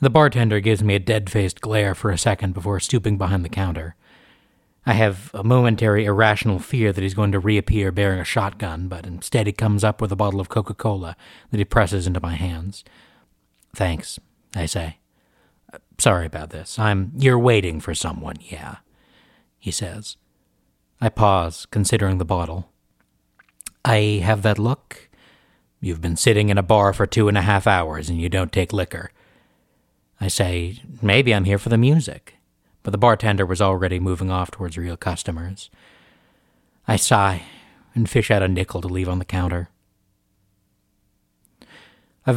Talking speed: 165 wpm